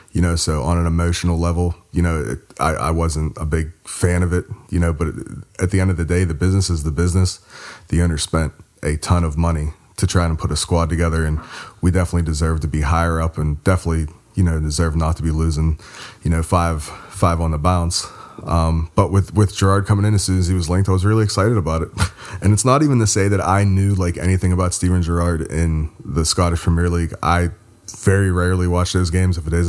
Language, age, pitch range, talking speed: English, 30-49, 85-95 Hz, 235 wpm